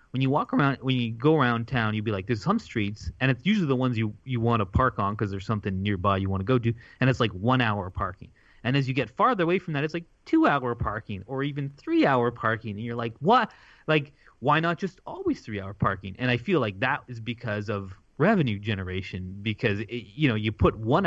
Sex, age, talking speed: male, 20-39, 250 wpm